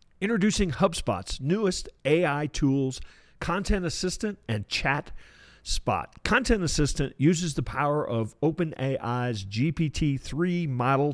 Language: English